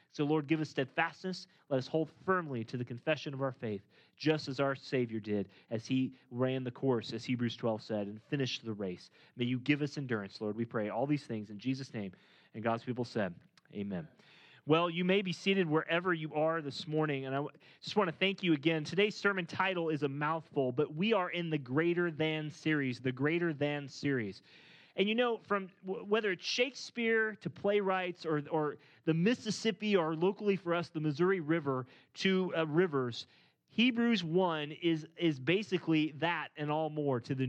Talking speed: 195 wpm